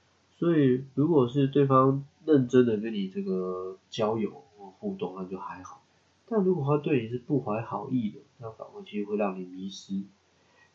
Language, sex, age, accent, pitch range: Chinese, male, 20-39, native, 100-140 Hz